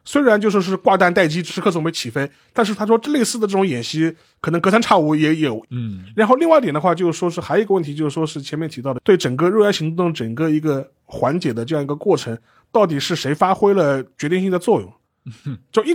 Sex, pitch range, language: male, 140-215 Hz, Chinese